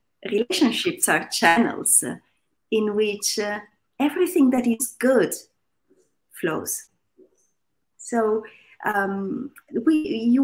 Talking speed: 80 wpm